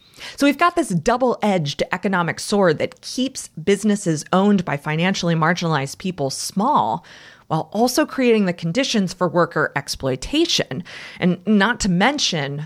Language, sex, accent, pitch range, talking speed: English, female, American, 165-230 Hz, 135 wpm